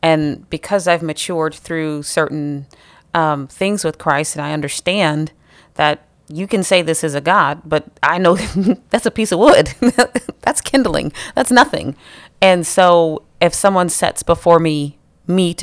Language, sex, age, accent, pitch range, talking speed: English, female, 30-49, American, 150-180 Hz, 155 wpm